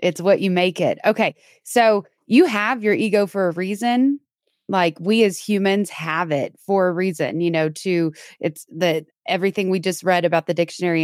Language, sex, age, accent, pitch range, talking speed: English, female, 20-39, American, 175-215 Hz, 190 wpm